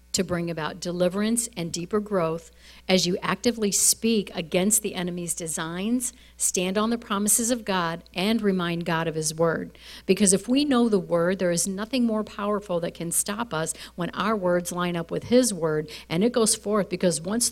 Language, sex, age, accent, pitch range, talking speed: English, female, 50-69, American, 170-205 Hz, 190 wpm